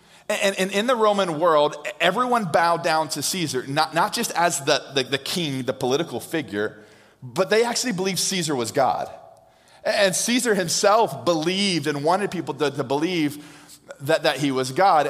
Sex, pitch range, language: male, 150-190 Hz, English